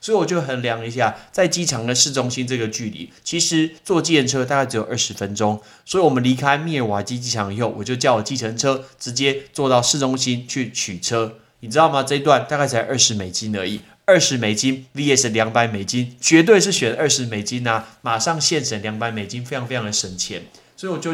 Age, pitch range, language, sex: 20-39, 110-145 Hz, Chinese, male